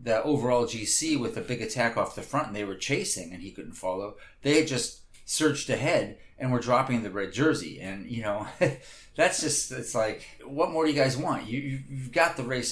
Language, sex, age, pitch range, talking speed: English, male, 30-49, 115-150 Hz, 220 wpm